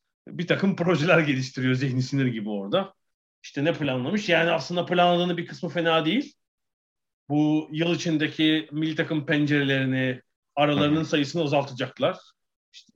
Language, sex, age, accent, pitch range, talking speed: Turkish, male, 40-59, native, 135-170 Hz, 130 wpm